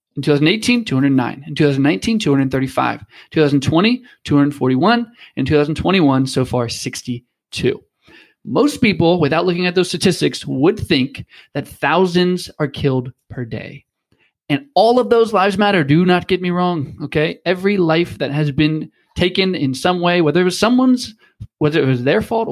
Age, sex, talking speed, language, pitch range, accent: 20-39, male, 155 wpm, English, 130-175 Hz, American